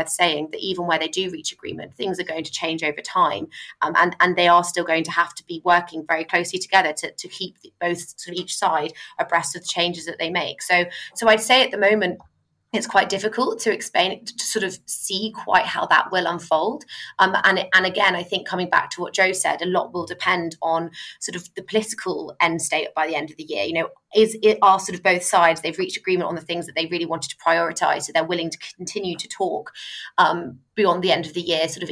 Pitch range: 165-195 Hz